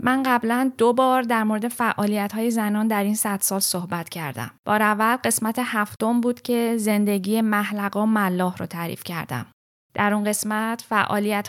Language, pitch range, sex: Persian, 190-220 Hz, female